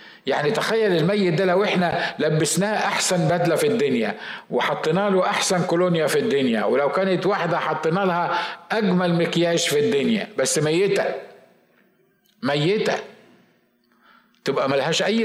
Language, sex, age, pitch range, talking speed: Arabic, male, 50-69, 155-210 Hz, 125 wpm